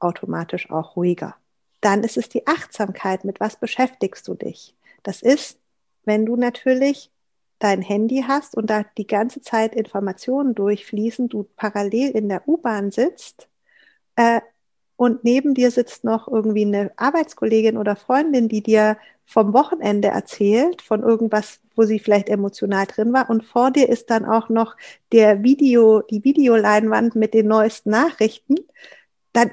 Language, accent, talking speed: German, German, 145 wpm